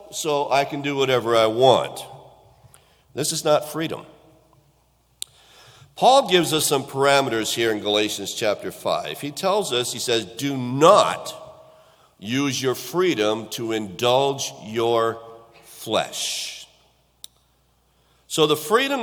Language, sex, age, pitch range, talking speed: English, male, 50-69, 120-150 Hz, 120 wpm